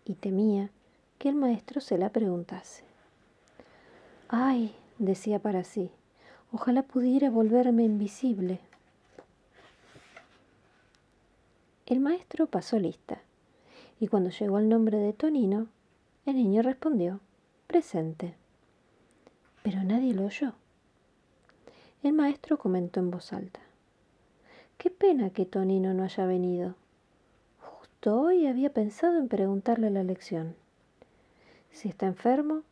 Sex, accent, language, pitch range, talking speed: female, Argentinian, Spanish, 190-255 Hz, 110 wpm